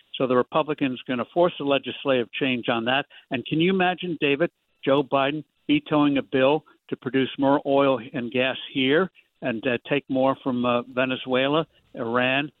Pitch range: 130-150 Hz